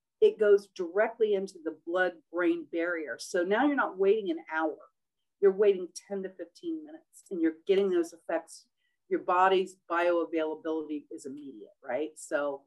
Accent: American